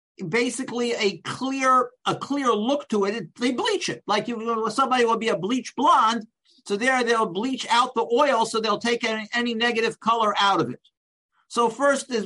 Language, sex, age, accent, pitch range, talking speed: English, male, 50-69, American, 205-245 Hz, 195 wpm